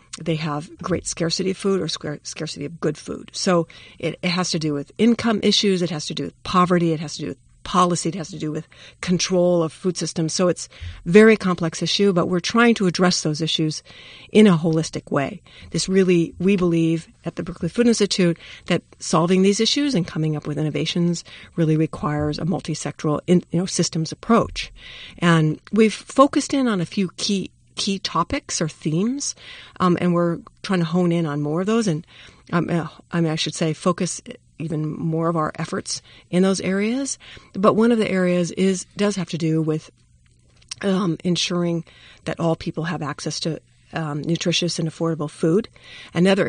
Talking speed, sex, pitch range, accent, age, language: 190 wpm, female, 155-185 Hz, American, 50-69, English